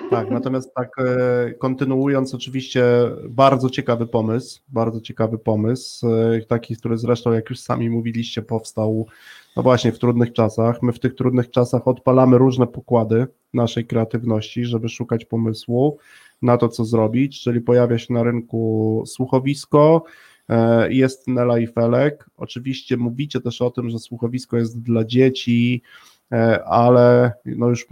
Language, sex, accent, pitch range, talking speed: Polish, male, native, 115-130 Hz, 135 wpm